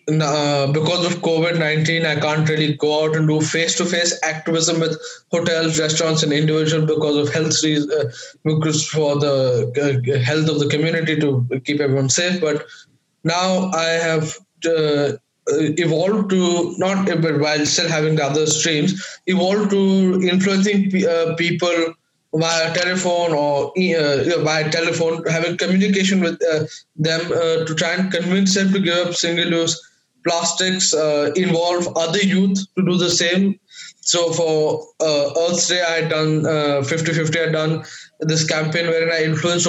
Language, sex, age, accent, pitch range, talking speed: English, male, 20-39, Indian, 155-175 Hz, 160 wpm